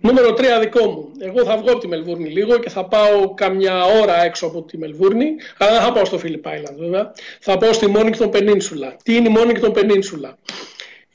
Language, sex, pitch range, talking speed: Greek, male, 180-220 Hz, 210 wpm